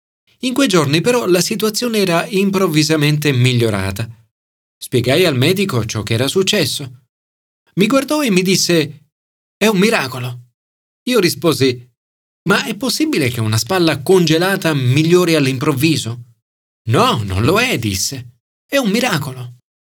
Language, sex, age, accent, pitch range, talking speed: Italian, male, 40-59, native, 125-200 Hz, 130 wpm